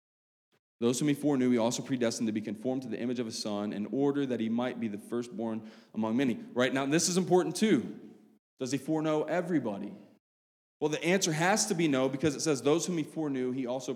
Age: 20-39